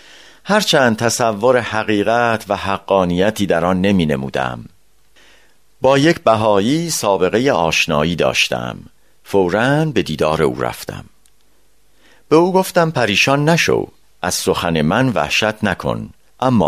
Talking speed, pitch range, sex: 110 wpm, 90-145 Hz, male